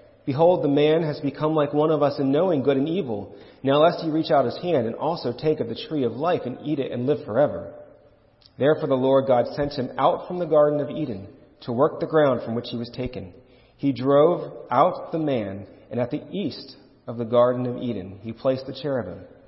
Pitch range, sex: 110-140 Hz, male